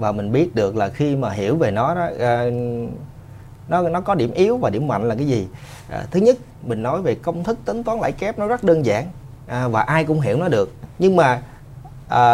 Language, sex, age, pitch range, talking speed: Vietnamese, male, 20-39, 125-175 Hz, 240 wpm